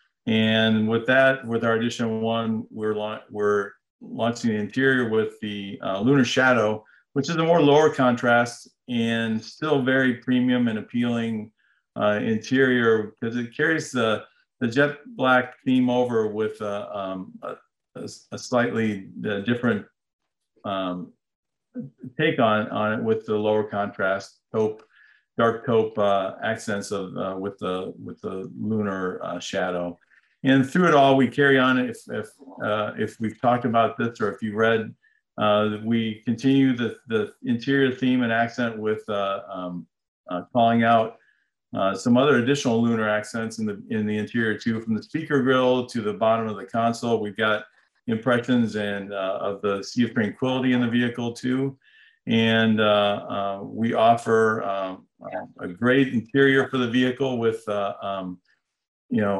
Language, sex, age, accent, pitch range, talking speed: English, male, 50-69, American, 105-125 Hz, 160 wpm